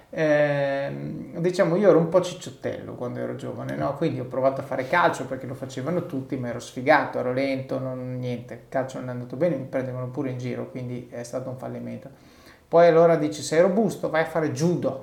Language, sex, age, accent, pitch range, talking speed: Italian, male, 30-49, native, 125-170 Hz, 210 wpm